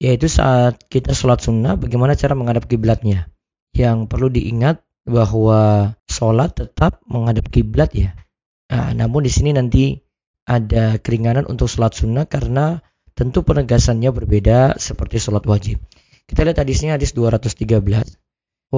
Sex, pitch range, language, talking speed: male, 110-125 Hz, Indonesian, 130 wpm